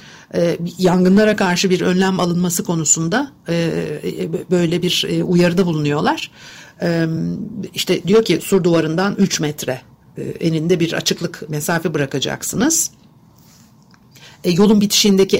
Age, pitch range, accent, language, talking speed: 60-79, 160-195 Hz, native, Turkish, 95 wpm